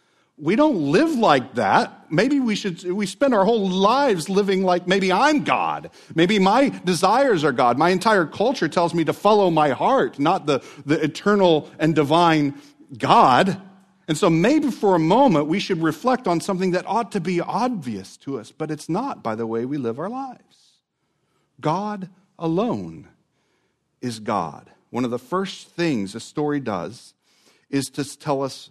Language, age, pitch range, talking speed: English, 50-69, 140-190 Hz, 175 wpm